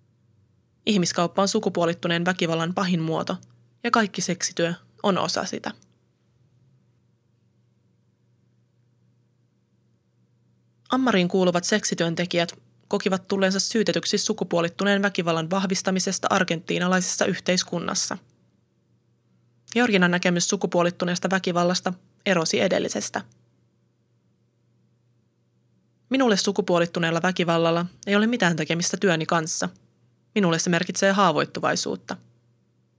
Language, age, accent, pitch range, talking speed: Finnish, 20-39, native, 120-195 Hz, 75 wpm